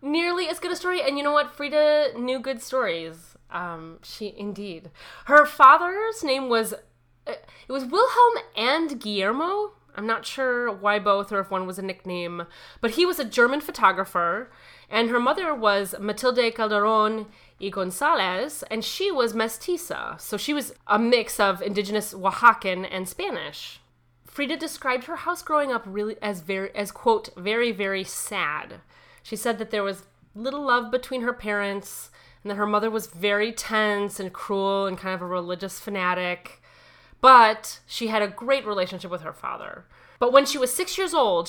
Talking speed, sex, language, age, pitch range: 170 wpm, female, English, 30-49, 200-270 Hz